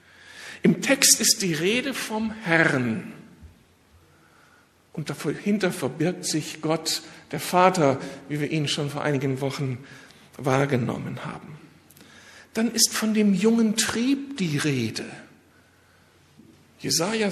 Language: German